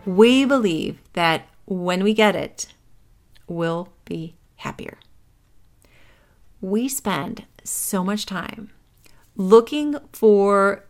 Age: 40-59